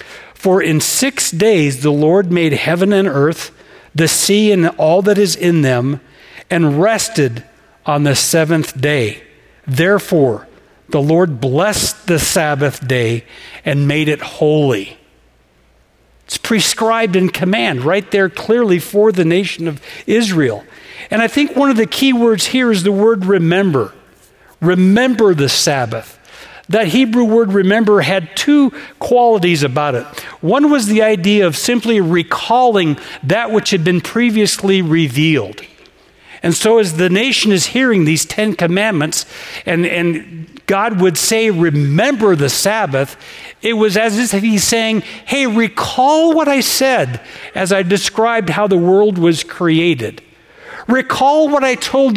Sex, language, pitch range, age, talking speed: male, English, 155-220 Hz, 60-79, 145 wpm